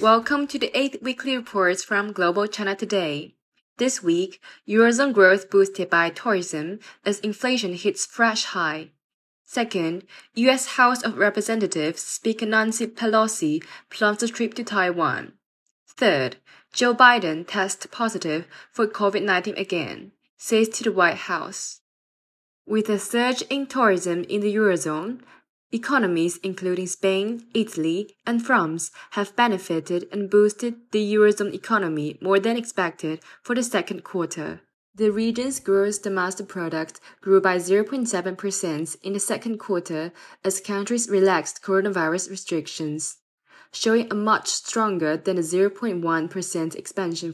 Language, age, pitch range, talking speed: English, 10-29, 180-225 Hz, 130 wpm